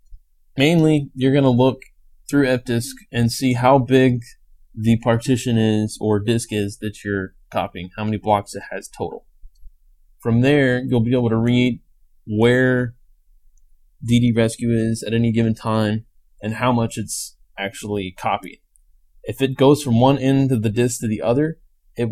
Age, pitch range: 20-39, 100-125 Hz